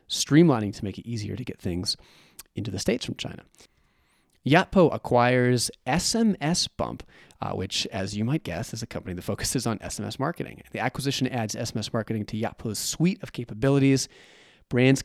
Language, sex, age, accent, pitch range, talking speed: English, male, 30-49, American, 100-130 Hz, 170 wpm